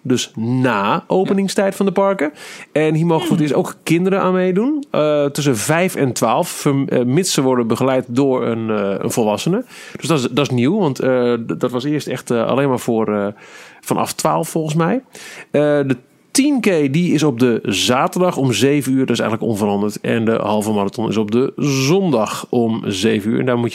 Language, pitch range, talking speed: Dutch, 115-155 Hz, 205 wpm